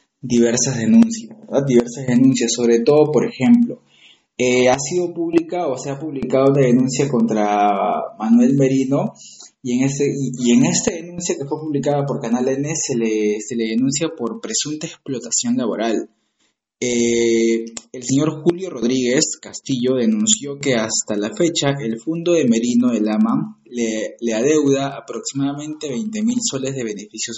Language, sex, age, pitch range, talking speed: Spanish, male, 20-39, 115-160 Hz, 155 wpm